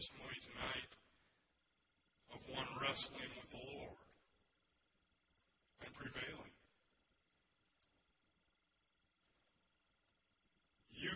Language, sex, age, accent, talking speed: English, male, 60-79, American, 55 wpm